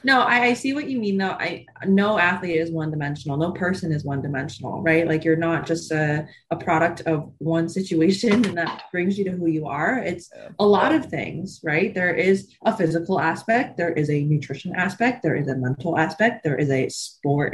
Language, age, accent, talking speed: English, 20-39, American, 215 wpm